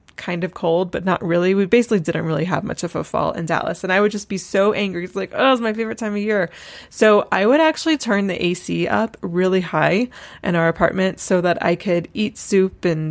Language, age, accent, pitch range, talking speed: English, 20-39, American, 175-205 Hz, 245 wpm